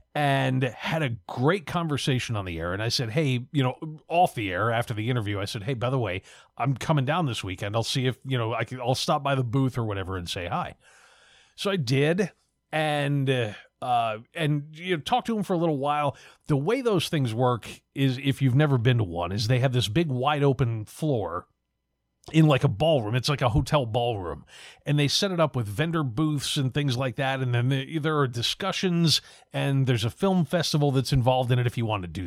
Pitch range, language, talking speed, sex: 115-150 Hz, English, 230 wpm, male